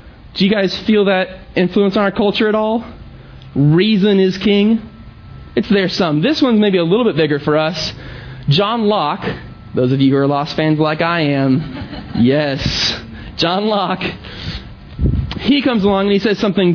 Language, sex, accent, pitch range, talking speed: English, male, American, 145-205 Hz, 170 wpm